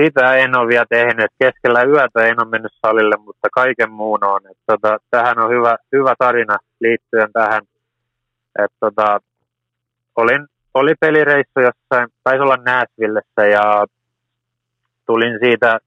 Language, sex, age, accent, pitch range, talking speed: Finnish, male, 20-39, native, 110-120 Hz, 130 wpm